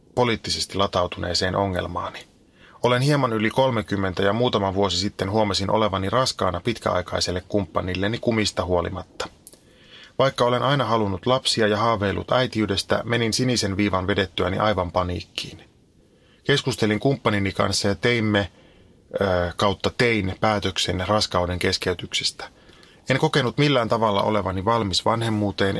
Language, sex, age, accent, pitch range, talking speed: Finnish, male, 30-49, native, 95-115 Hz, 115 wpm